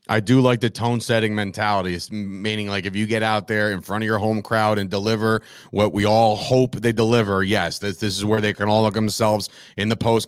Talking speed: 245 wpm